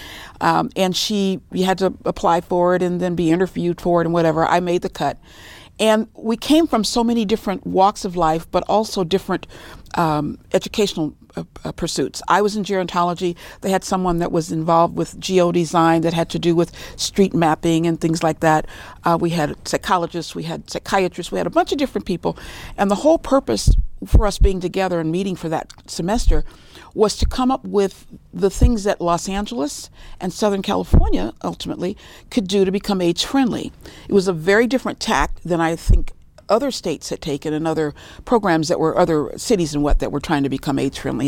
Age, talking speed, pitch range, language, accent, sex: 50-69, 200 wpm, 165-200 Hz, English, American, female